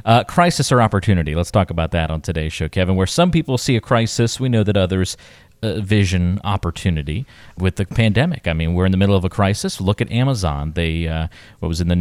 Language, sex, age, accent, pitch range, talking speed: English, male, 30-49, American, 90-110 Hz, 230 wpm